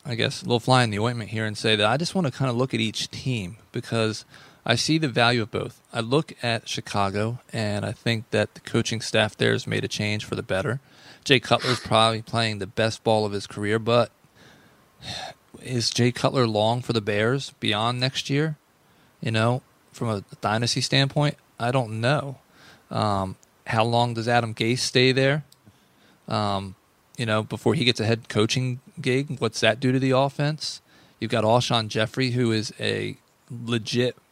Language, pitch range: English, 110-130 Hz